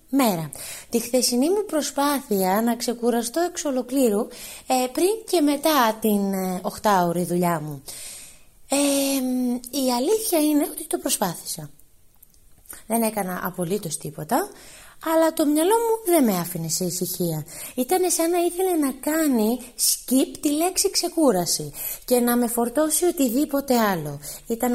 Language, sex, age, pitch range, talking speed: Greek, female, 20-39, 200-295 Hz, 135 wpm